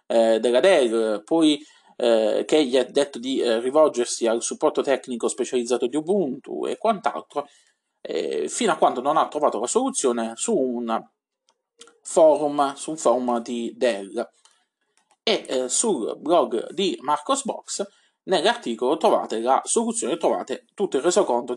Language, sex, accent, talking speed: Italian, male, native, 135 wpm